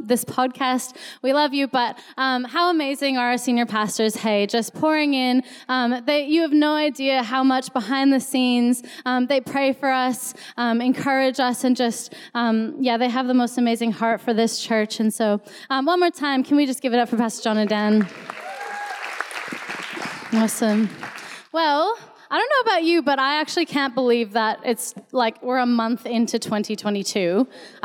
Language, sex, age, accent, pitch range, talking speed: English, female, 10-29, American, 240-275 Hz, 185 wpm